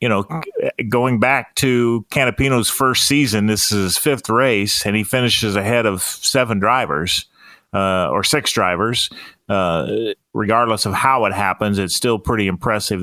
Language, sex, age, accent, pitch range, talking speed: English, male, 40-59, American, 100-120 Hz, 155 wpm